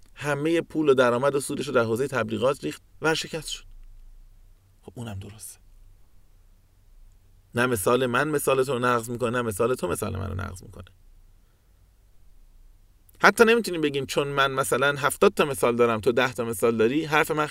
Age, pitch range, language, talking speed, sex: 30-49, 95-155 Hz, Persian, 165 wpm, male